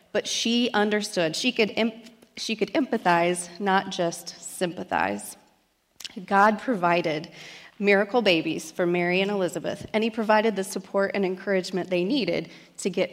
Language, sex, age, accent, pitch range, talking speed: English, female, 30-49, American, 185-240 Hz, 140 wpm